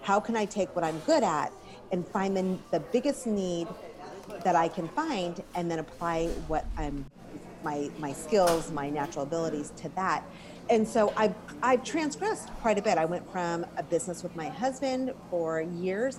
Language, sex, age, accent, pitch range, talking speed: English, female, 40-59, American, 165-220 Hz, 180 wpm